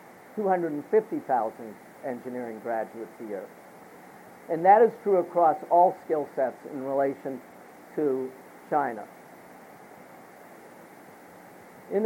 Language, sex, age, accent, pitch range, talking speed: English, male, 50-69, American, 145-195 Hz, 90 wpm